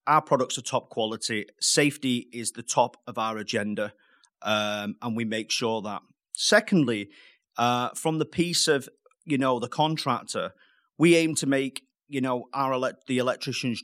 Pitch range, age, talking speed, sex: 115-150 Hz, 30-49, 160 wpm, male